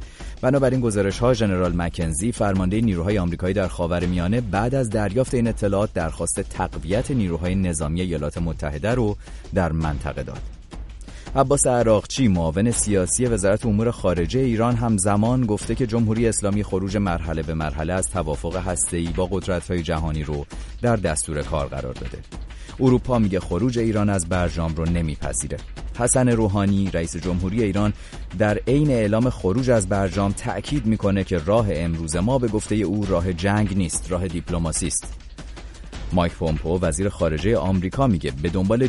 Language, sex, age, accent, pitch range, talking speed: English, male, 30-49, Canadian, 85-110 Hz, 150 wpm